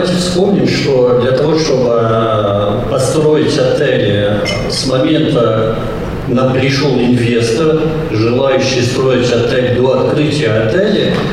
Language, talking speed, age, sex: Russian, 100 wpm, 50-69, male